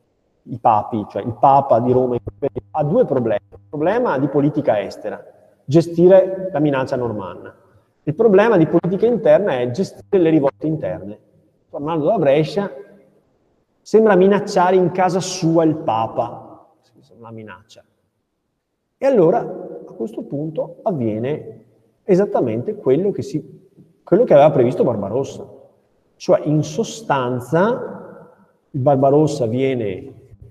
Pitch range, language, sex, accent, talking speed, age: 125-190 Hz, Italian, male, native, 120 wpm, 30-49